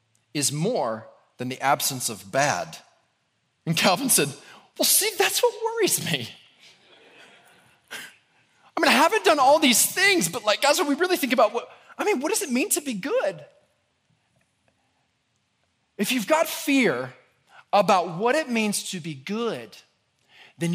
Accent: American